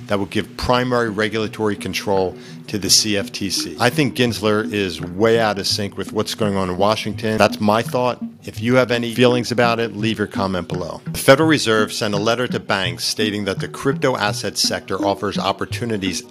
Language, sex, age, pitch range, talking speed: English, male, 50-69, 100-120 Hz, 195 wpm